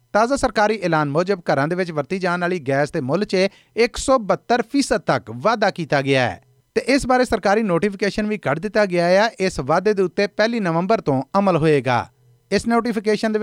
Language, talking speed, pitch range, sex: Punjabi, 190 wpm, 150-210 Hz, male